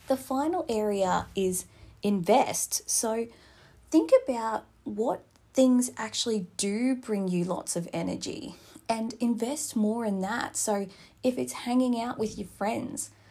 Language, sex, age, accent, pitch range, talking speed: English, female, 20-39, Australian, 195-240 Hz, 135 wpm